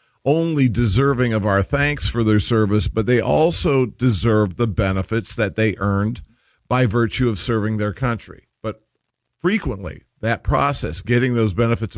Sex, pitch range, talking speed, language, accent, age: male, 105-120 Hz, 150 wpm, English, American, 50-69